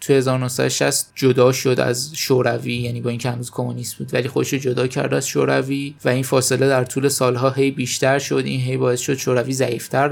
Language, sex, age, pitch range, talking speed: Persian, male, 20-39, 125-145 Hz, 200 wpm